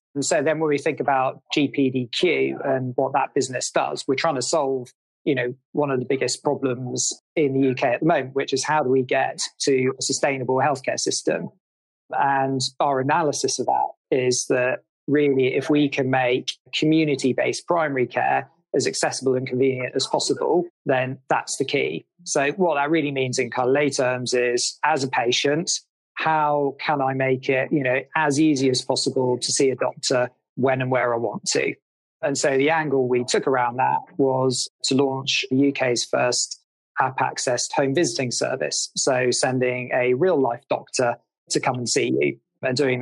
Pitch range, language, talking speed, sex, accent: 125-145 Hz, English, 185 wpm, male, British